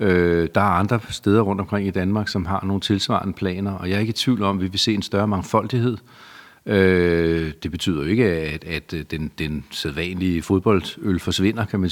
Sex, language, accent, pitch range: male, Danish, native, 90-110 Hz